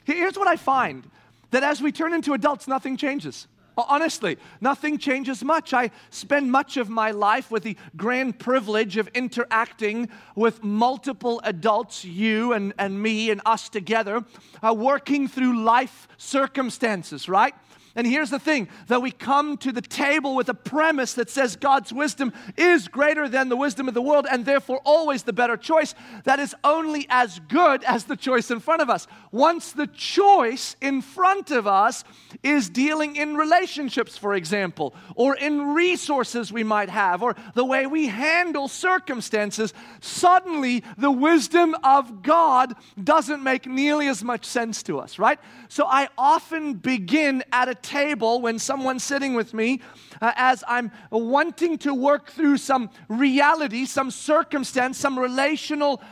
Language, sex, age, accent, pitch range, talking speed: English, male, 40-59, American, 235-290 Hz, 160 wpm